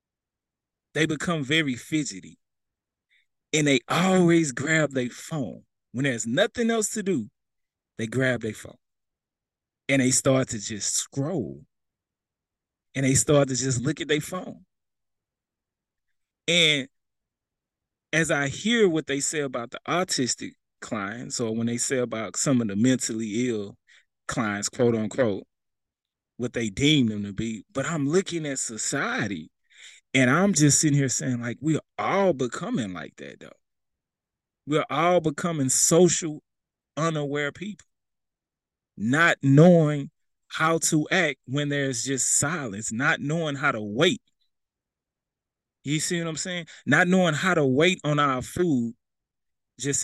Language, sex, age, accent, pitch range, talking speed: English, male, 30-49, American, 120-160 Hz, 145 wpm